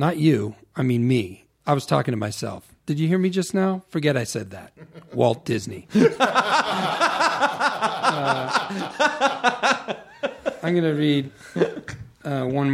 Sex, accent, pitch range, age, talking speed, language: male, American, 125-170 Hz, 40-59, 130 wpm, English